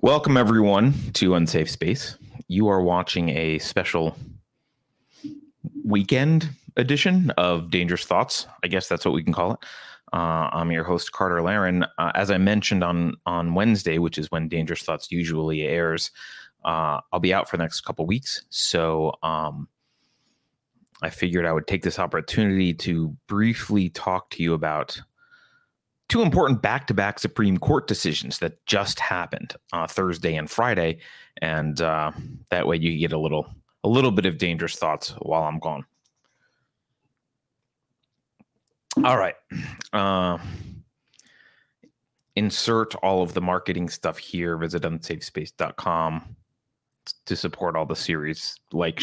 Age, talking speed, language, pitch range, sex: 30-49, 140 wpm, English, 80-115 Hz, male